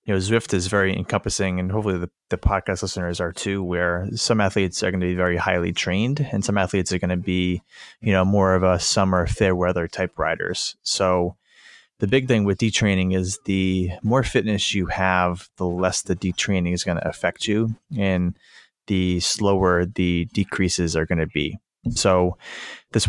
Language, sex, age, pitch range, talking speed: English, male, 20-39, 90-100 Hz, 190 wpm